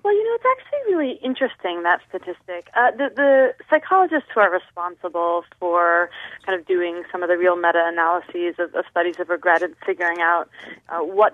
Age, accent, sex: 30-49, American, female